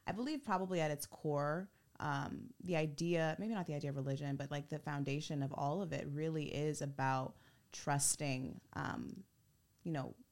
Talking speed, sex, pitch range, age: 175 wpm, female, 145-175 Hz, 20-39